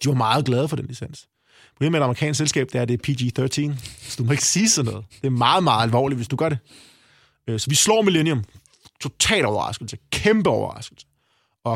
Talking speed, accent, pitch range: 220 wpm, native, 125-170 Hz